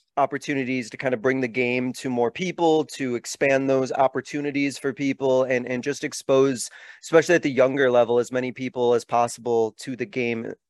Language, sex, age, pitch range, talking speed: English, male, 30-49, 120-135 Hz, 185 wpm